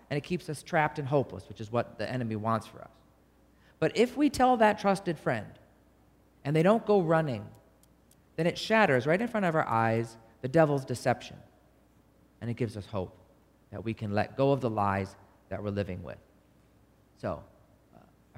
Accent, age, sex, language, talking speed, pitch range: American, 40-59, male, English, 190 wpm, 100-140 Hz